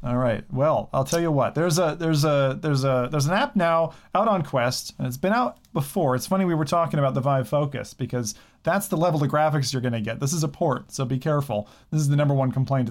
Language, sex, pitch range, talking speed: English, male, 135-175 Hz, 265 wpm